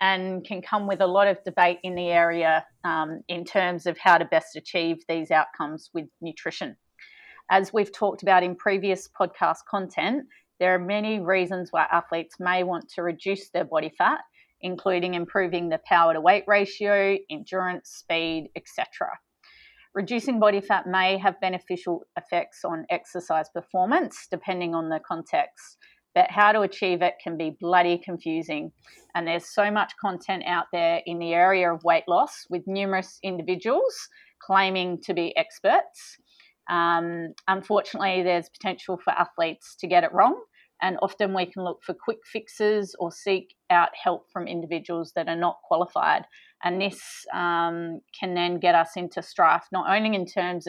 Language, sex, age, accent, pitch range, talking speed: English, female, 30-49, Australian, 170-195 Hz, 165 wpm